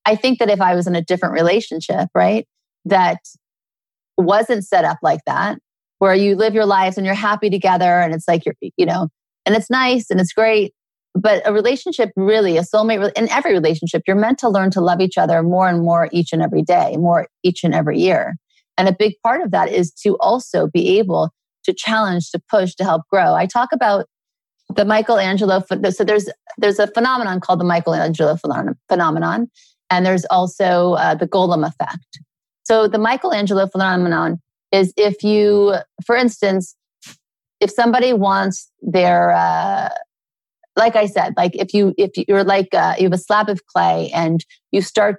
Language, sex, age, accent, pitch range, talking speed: English, female, 30-49, American, 180-215 Hz, 185 wpm